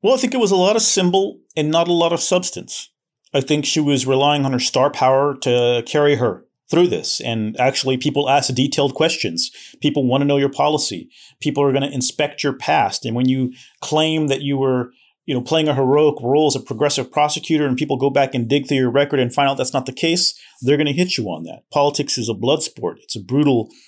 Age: 40-59